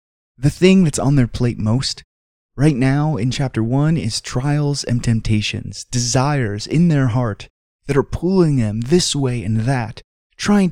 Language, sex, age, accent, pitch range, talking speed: English, male, 20-39, American, 110-140 Hz, 160 wpm